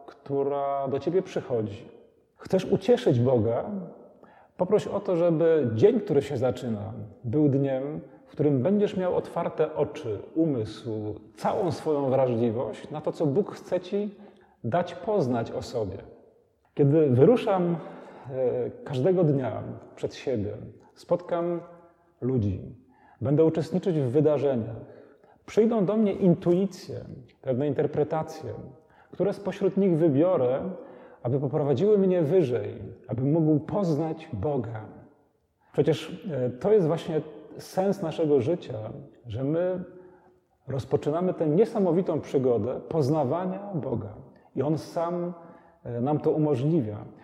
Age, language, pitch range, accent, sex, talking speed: 40-59, Polish, 140-180 Hz, native, male, 110 wpm